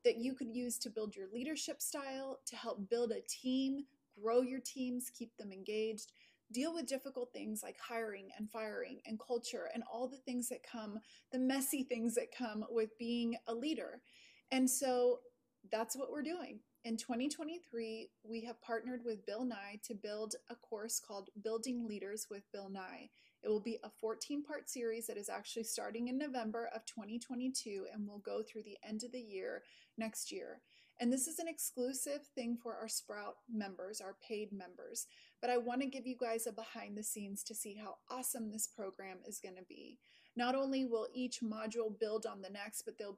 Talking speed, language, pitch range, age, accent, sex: 195 wpm, English, 215-250 Hz, 30-49, American, female